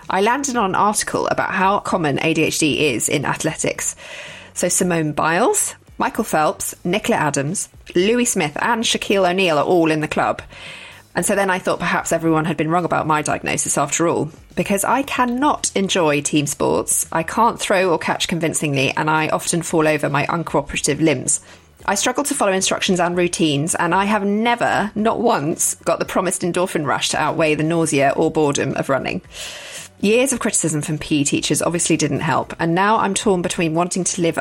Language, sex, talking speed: English, female, 185 wpm